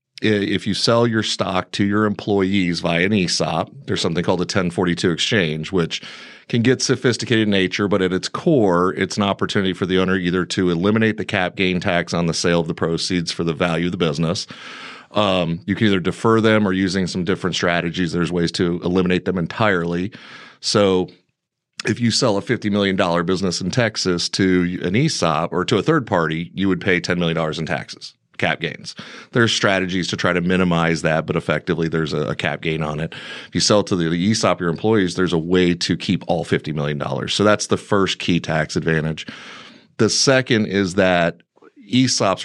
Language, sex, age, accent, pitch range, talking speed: English, male, 40-59, American, 85-105 Hz, 200 wpm